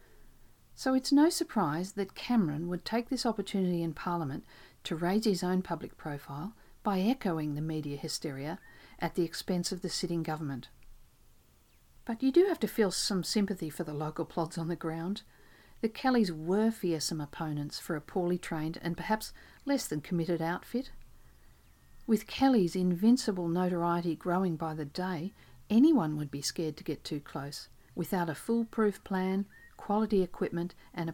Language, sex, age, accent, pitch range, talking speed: English, female, 50-69, Australian, 160-205 Hz, 160 wpm